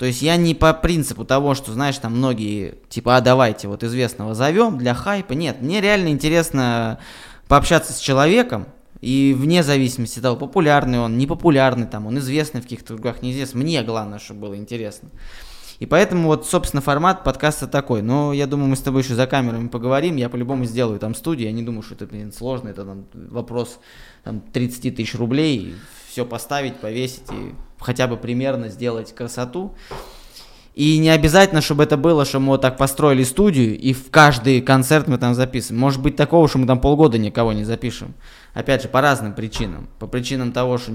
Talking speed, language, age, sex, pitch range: 185 wpm, Russian, 20-39, male, 120-145 Hz